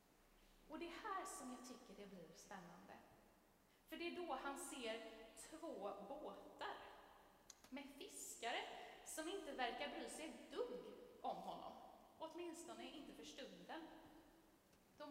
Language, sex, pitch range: Swedish, female, 230-315 Hz